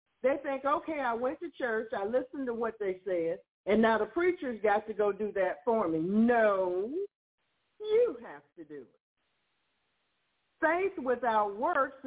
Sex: female